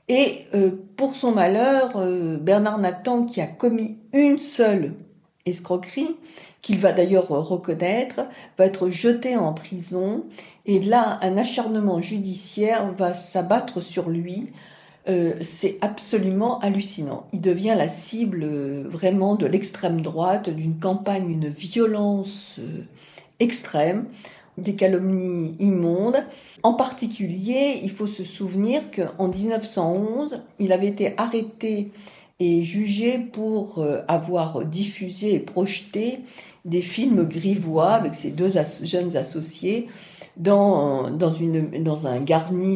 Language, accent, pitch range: French, French, 170-215 Hz